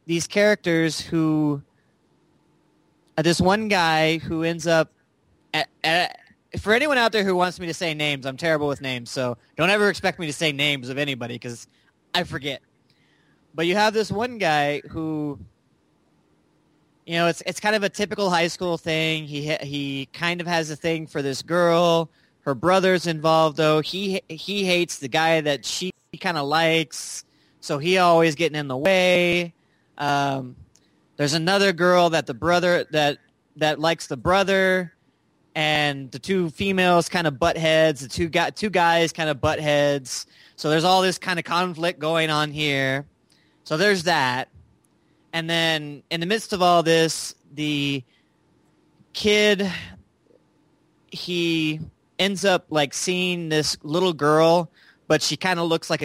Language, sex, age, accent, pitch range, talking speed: English, male, 20-39, American, 150-175 Hz, 165 wpm